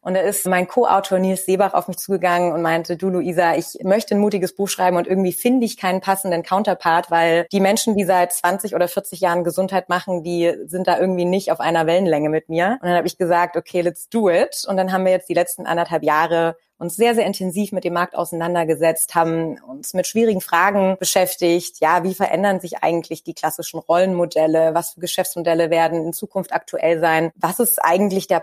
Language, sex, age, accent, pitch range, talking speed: German, female, 30-49, German, 170-205 Hz, 210 wpm